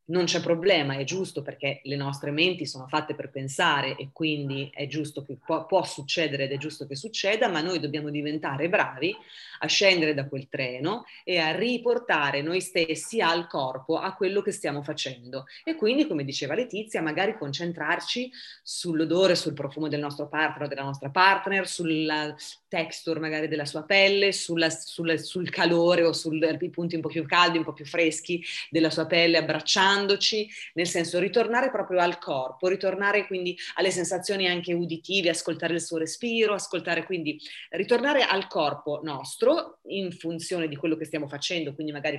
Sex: female